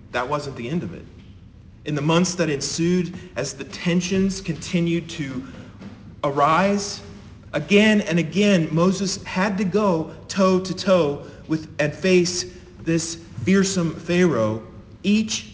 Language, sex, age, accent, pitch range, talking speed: English, male, 40-59, American, 100-170 Hz, 130 wpm